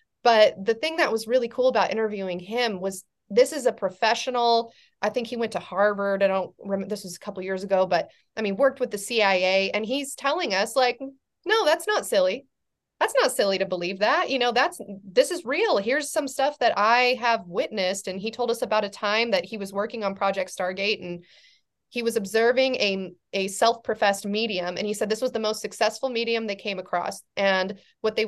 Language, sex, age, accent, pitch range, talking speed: English, female, 20-39, American, 200-250 Hz, 220 wpm